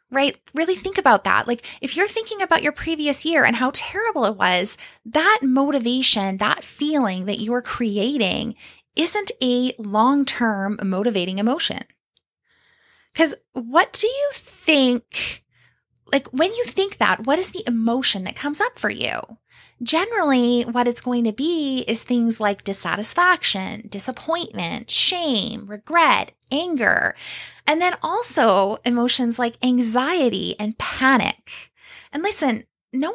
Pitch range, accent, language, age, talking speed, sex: 220-315 Hz, American, English, 20-39, 135 wpm, female